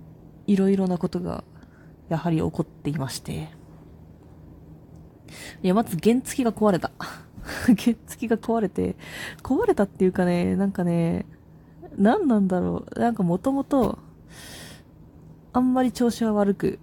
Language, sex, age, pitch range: Japanese, female, 20-39, 160-215 Hz